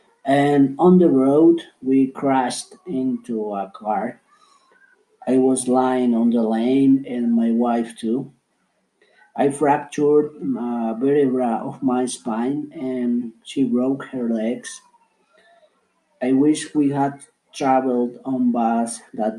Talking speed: 120 wpm